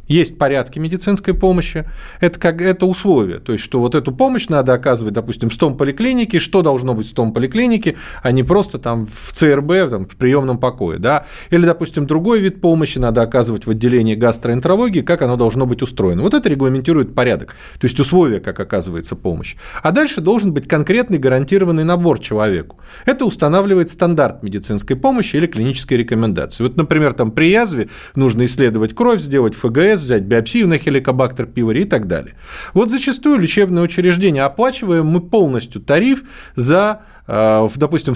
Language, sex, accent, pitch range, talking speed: Russian, male, native, 125-185 Hz, 160 wpm